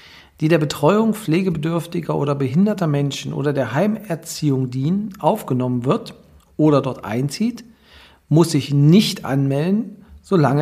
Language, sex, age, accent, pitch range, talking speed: German, male, 50-69, German, 130-170 Hz, 120 wpm